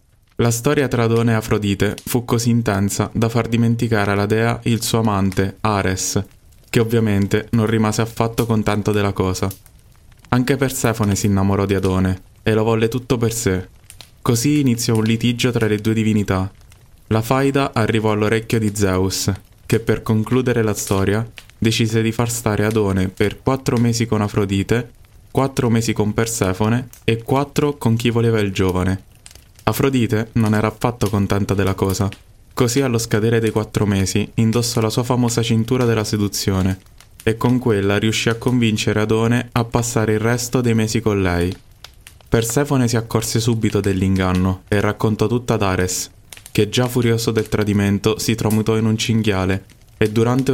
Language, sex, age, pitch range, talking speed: Italian, male, 20-39, 100-115 Hz, 160 wpm